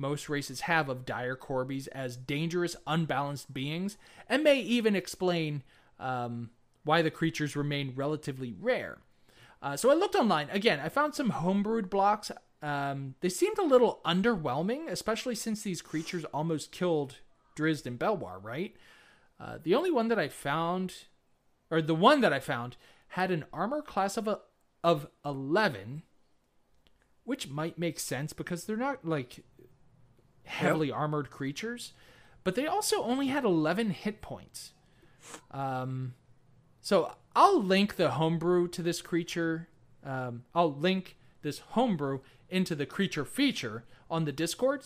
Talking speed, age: 145 wpm, 20-39